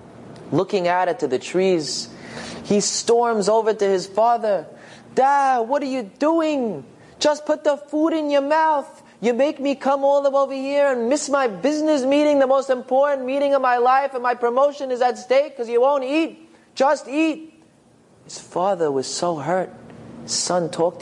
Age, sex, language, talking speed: 30-49, male, English, 180 wpm